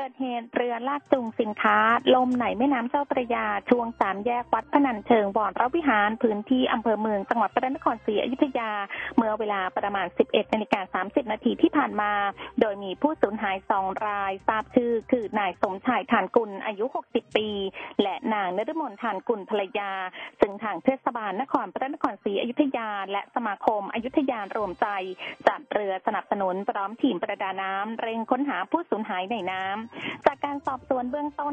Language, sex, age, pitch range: Thai, female, 20-39, 205-265 Hz